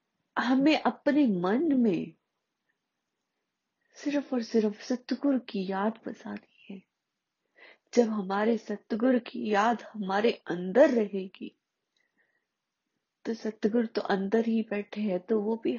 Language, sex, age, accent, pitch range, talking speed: Hindi, female, 30-49, native, 195-235 Hz, 115 wpm